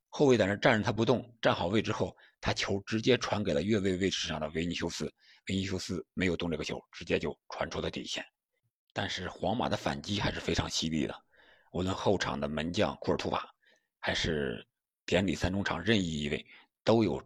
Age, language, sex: 50-69, Chinese, male